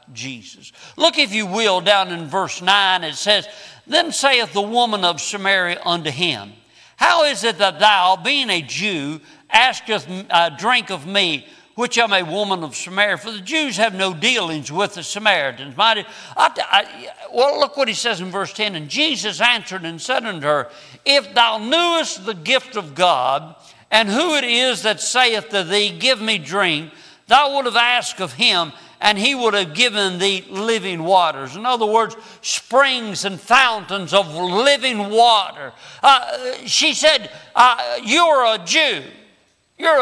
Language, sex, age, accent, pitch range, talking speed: English, male, 60-79, American, 175-245 Hz, 170 wpm